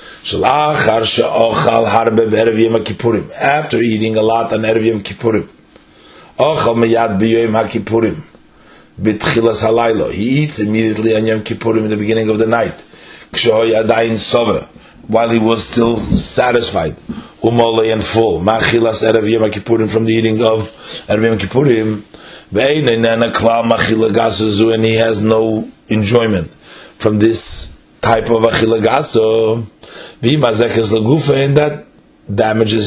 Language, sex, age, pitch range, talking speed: English, male, 30-49, 110-120 Hz, 90 wpm